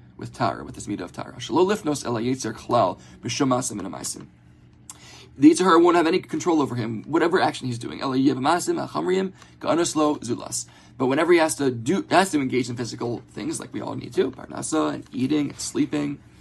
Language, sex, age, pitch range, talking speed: English, male, 20-39, 115-140 Hz, 165 wpm